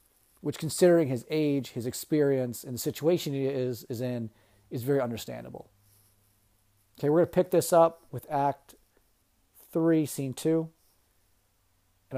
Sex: male